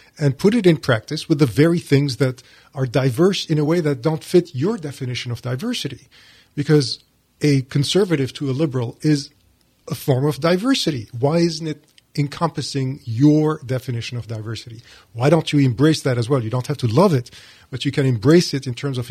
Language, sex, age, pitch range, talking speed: English, male, 40-59, 120-150 Hz, 195 wpm